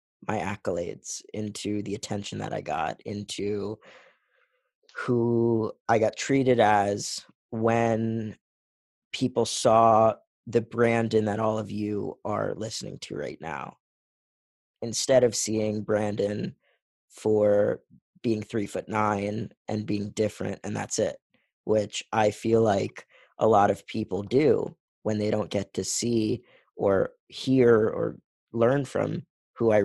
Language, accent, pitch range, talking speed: English, American, 105-120 Hz, 130 wpm